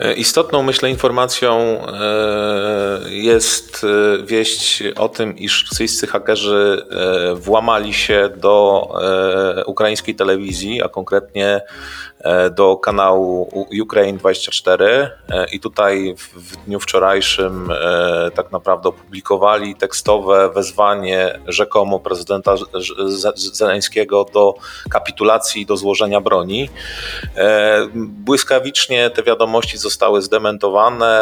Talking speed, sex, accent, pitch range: 85 wpm, male, native, 95-110 Hz